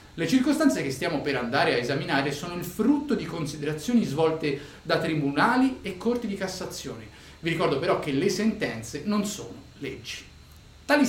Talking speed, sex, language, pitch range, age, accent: 160 wpm, male, Italian, 140-220 Hz, 30-49, native